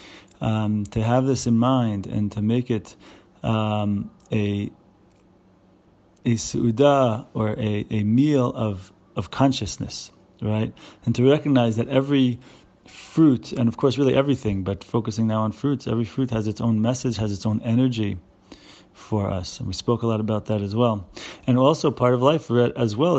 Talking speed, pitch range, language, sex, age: 170 wpm, 110-125 Hz, English, male, 30-49